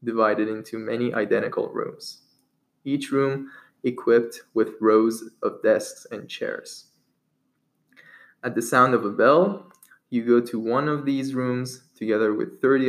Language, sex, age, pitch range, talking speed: English, male, 20-39, 110-135 Hz, 140 wpm